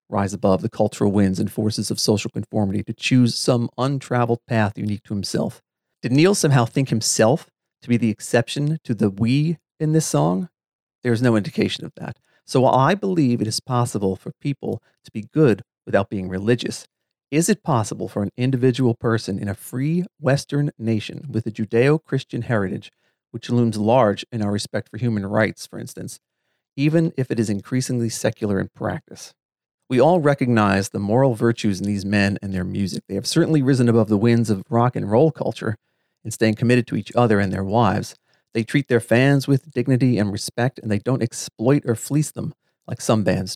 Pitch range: 105-140 Hz